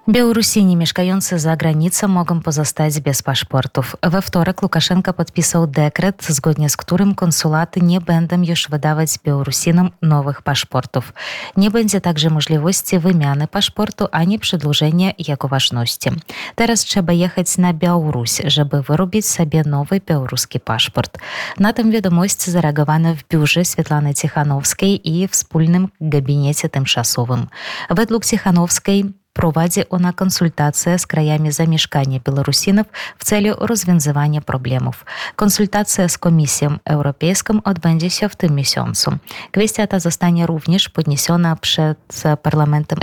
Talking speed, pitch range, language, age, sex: 110 wpm, 145-190 Hz, Polish, 20-39, female